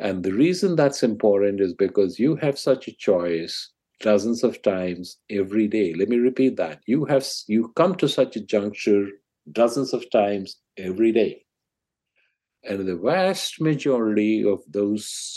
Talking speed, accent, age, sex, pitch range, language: 160 wpm, Indian, 50-69, male, 95-130 Hz, English